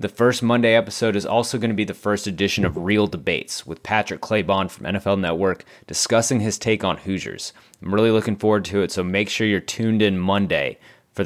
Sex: male